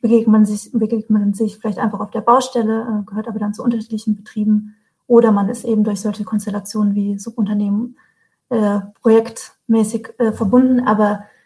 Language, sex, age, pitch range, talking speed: German, female, 20-39, 210-230 Hz, 145 wpm